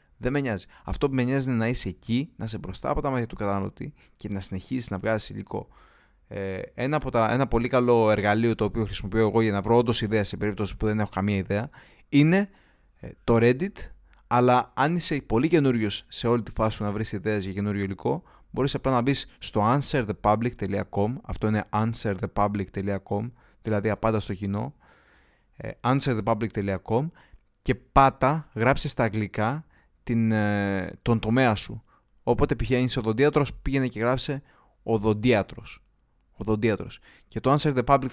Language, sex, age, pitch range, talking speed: Greek, male, 20-39, 105-130 Hz, 155 wpm